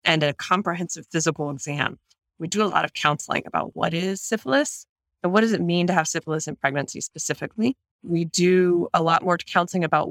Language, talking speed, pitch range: English, 195 wpm, 155-190 Hz